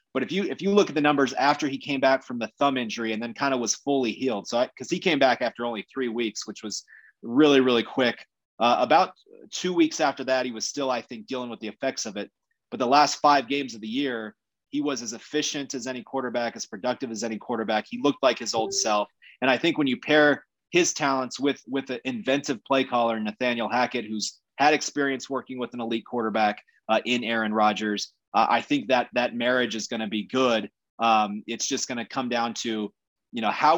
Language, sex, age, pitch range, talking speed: English, male, 30-49, 115-140 Hz, 235 wpm